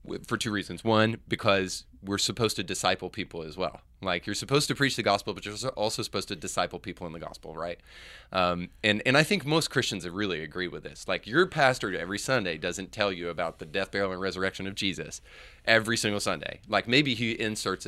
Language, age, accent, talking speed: English, 20-39, American, 215 wpm